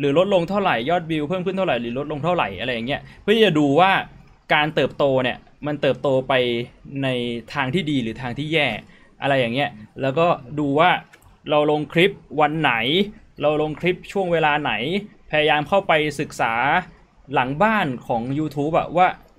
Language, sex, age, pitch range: Thai, male, 20-39, 130-175 Hz